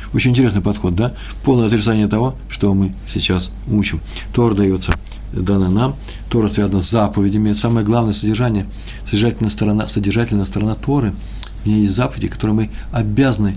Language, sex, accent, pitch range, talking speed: Russian, male, native, 95-120 Hz, 155 wpm